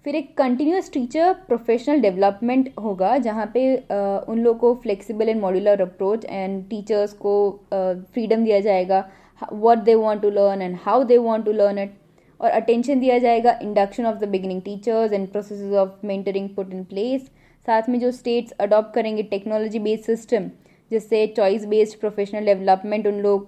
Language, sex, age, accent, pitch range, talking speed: Hindi, female, 20-39, native, 200-240 Hz, 170 wpm